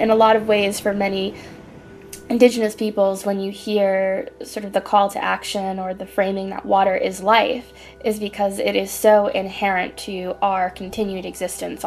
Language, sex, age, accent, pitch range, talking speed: English, female, 10-29, American, 190-220 Hz, 175 wpm